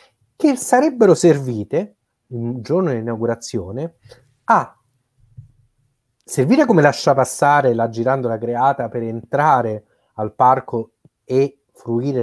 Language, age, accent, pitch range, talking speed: Italian, 30-49, native, 115-145 Hz, 100 wpm